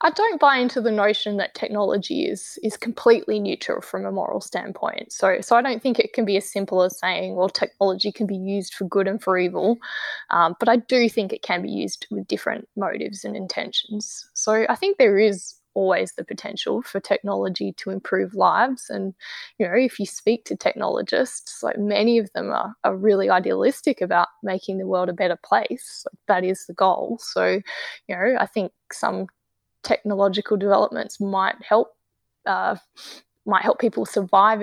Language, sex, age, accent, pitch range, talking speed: English, female, 20-39, Australian, 195-235 Hz, 185 wpm